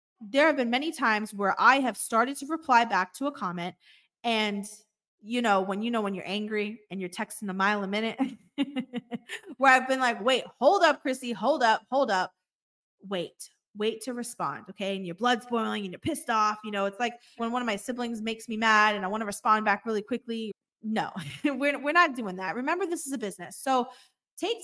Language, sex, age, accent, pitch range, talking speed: English, female, 20-39, American, 210-280 Hz, 215 wpm